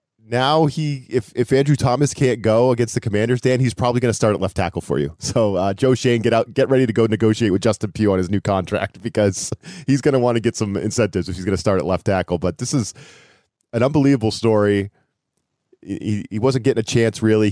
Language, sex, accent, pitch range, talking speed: English, male, American, 95-120 Hz, 230 wpm